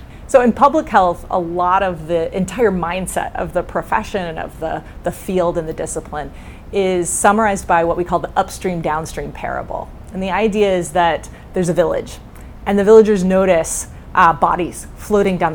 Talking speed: 175 wpm